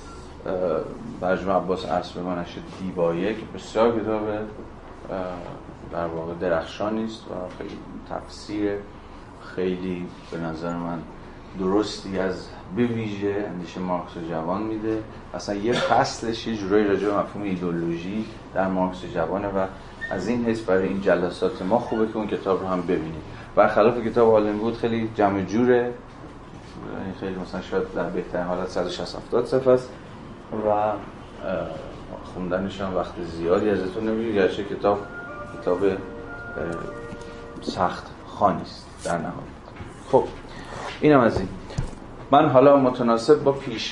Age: 30-49